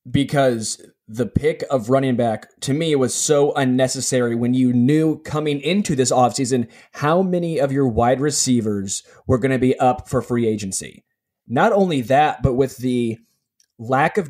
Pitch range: 120-140 Hz